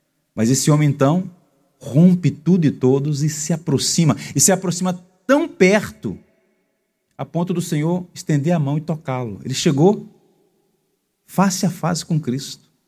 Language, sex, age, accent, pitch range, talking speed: Portuguese, male, 40-59, Brazilian, 125-170 Hz, 150 wpm